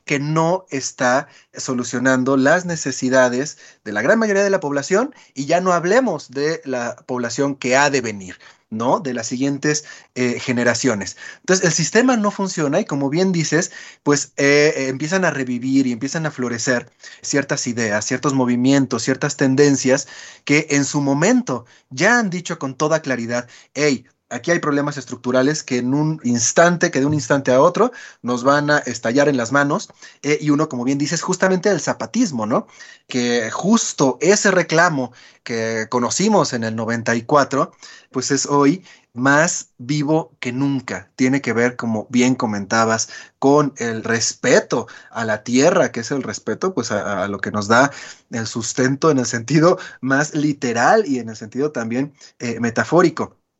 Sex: male